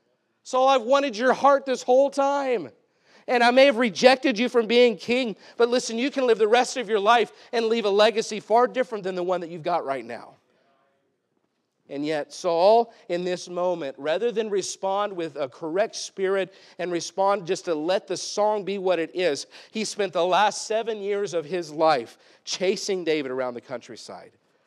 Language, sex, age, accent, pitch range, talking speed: English, male, 50-69, American, 160-225 Hz, 190 wpm